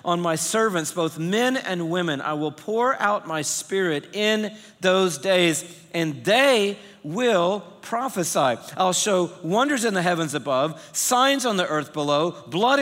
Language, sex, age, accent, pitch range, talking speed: English, male, 50-69, American, 165-235 Hz, 155 wpm